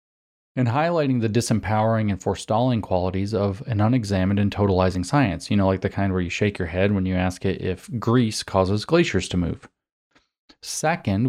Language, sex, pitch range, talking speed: English, male, 95-120 Hz, 180 wpm